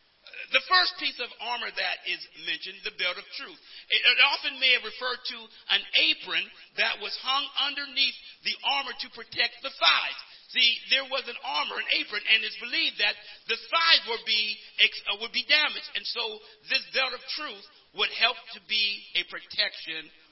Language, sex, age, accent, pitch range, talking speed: English, male, 50-69, American, 215-285 Hz, 175 wpm